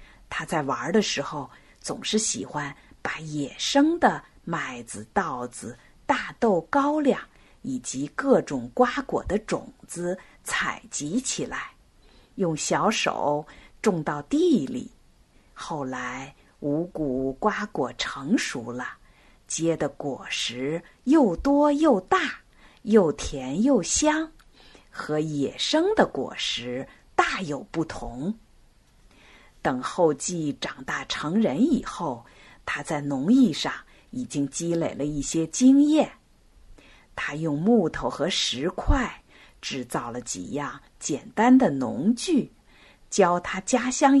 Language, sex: Chinese, female